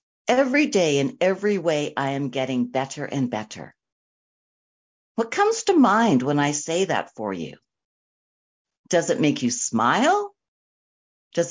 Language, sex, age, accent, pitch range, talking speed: English, female, 60-79, American, 175-250 Hz, 140 wpm